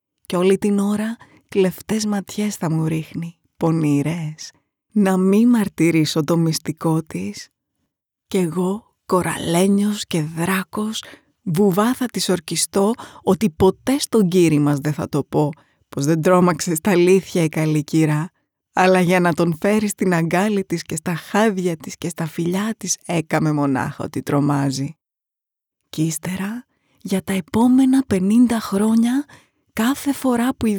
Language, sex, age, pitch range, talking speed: Greek, female, 20-39, 165-215 Hz, 140 wpm